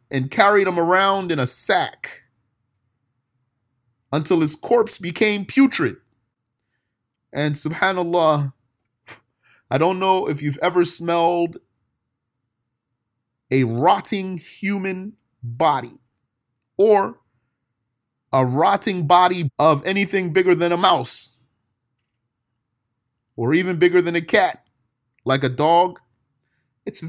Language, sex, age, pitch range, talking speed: Arabic, male, 30-49, 125-190 Hz, 100 wpm